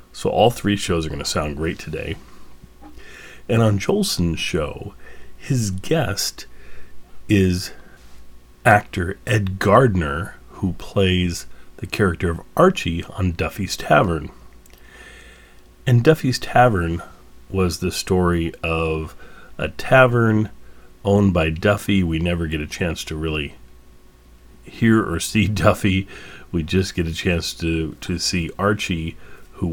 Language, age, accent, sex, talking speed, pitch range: English, 40-59, American, male, 125 wpm, 80-95 Hz